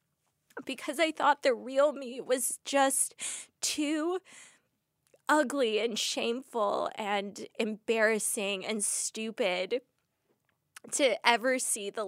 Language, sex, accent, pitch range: English, female, American, 205-245 Hz